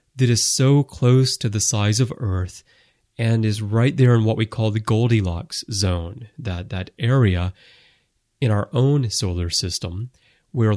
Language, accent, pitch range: English, American, 100-130 Hz